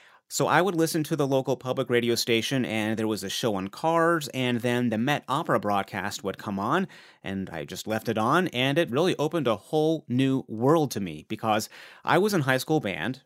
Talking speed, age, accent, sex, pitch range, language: 220 wpm, 30-49, American, male, 110-145 Hz, English